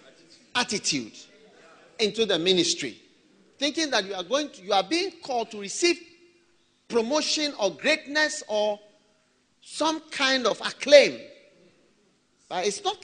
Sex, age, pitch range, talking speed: male, 50-69, 210-310 Hz, 125 wpm